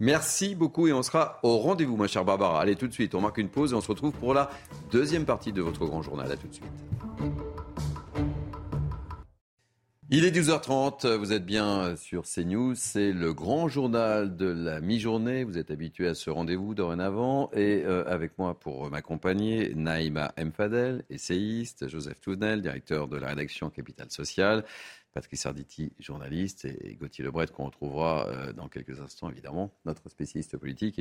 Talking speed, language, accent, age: 170 wpm, French, French, 40-59